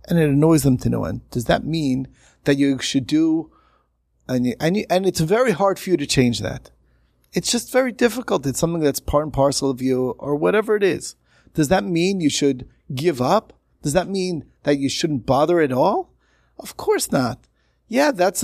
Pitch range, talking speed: 125-170 Hz, 210 wpm